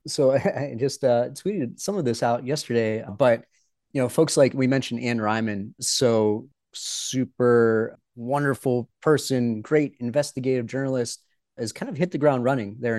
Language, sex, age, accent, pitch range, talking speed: English, male, 30-49, American, 110-140 Hz, 155 wpm